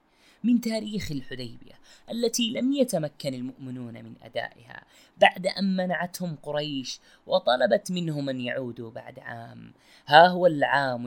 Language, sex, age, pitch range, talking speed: Arabic, female, 20-39, 120-185 Hz, 120 wpm